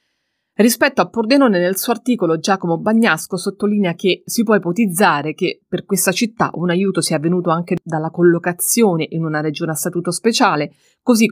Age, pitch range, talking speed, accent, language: 30-49, 170-215 Hz, 165 wpm, native, Italian